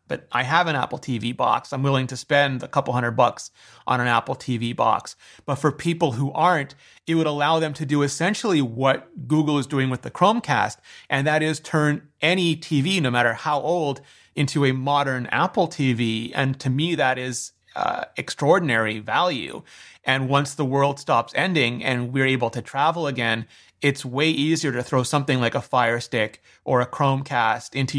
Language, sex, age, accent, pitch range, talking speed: English, male, 30-49, American, 125-150 Hz, 190 wpm